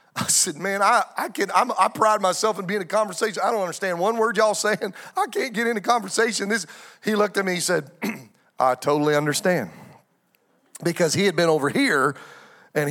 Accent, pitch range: American, 180-230 Hz